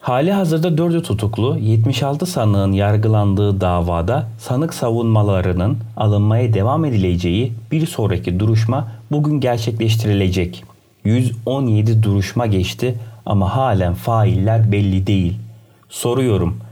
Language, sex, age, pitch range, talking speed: Turkish, male, 30-49, 100-120 Hz, 95 wpm